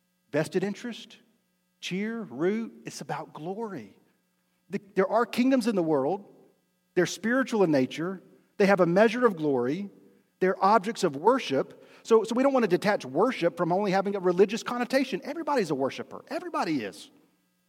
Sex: male